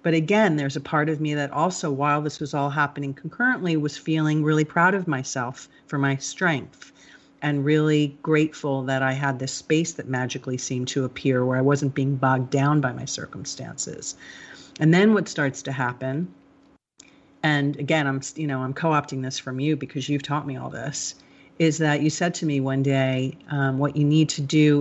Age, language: 40-59, English